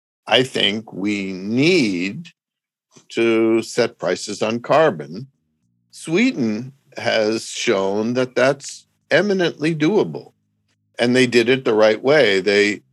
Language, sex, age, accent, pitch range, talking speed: English, male, 60-79, American, 100-130 Hz, 110 wpm